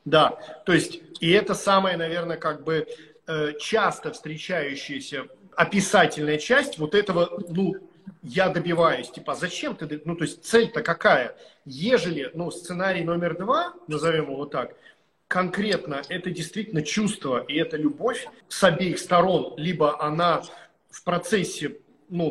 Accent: native